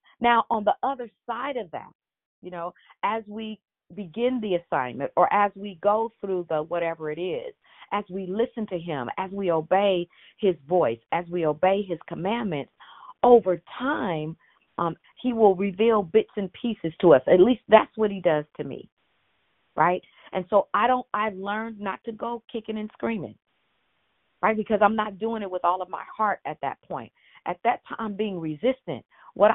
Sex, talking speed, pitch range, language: female, 185 wpm, 175-225 Hz, English